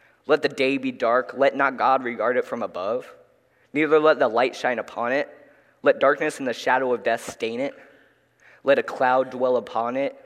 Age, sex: 10-29, male